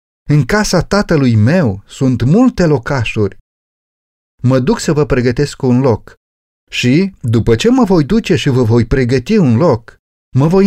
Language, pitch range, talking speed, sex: Romanian, 110-170 Hz, 155 wpm, male